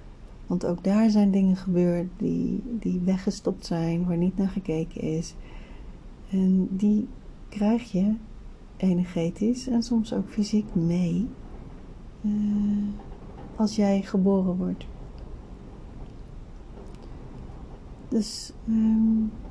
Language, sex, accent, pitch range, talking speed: Dutch, female, Dutch, 175-215 Hz, 95 wpm